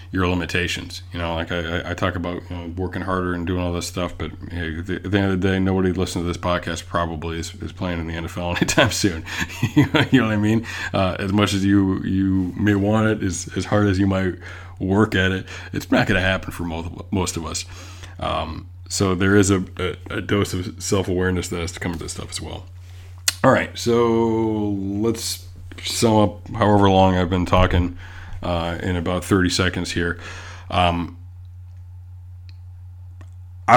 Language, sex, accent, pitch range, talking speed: English, male, American, 90-100 Hz, 205 wpm